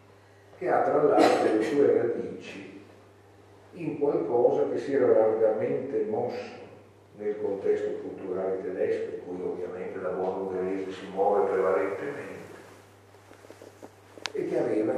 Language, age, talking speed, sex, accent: Italian, 50-69, 115 wpm, male, native